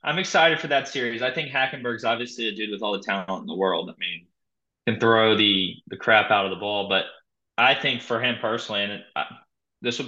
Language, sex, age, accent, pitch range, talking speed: English, male, 20-39, American, 100-120 Hz, 240 wpm